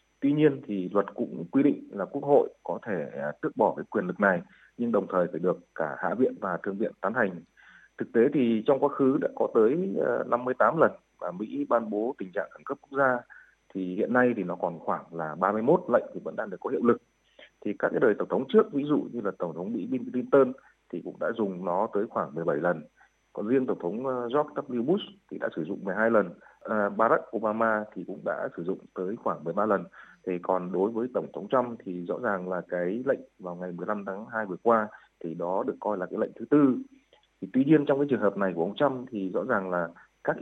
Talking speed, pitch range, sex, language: 240 wpm, 95-135 Hz, male, Vietnamese